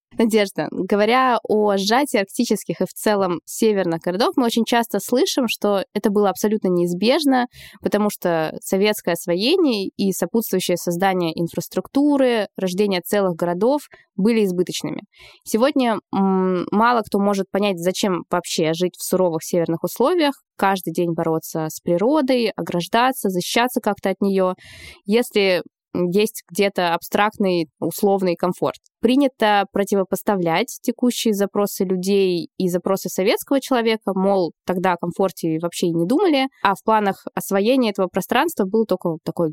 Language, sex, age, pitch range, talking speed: Russian, female, 20-39, 180-225 Hz, 130 wpm